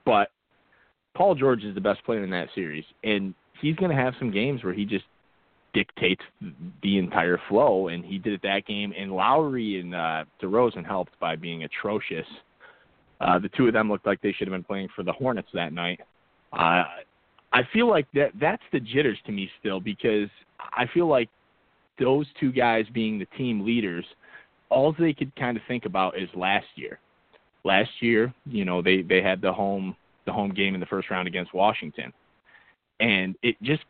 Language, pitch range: English, 100-140 Hz